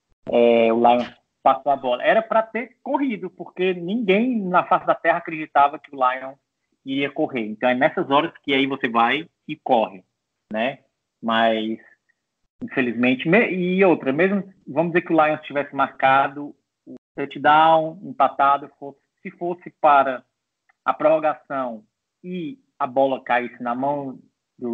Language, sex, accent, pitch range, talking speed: Portuguese, male, Brazilian, 120-160 Hz, 150 wpm